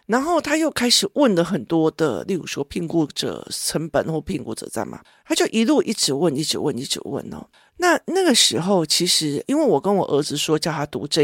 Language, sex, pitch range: Chinese, male, 155-235 Hz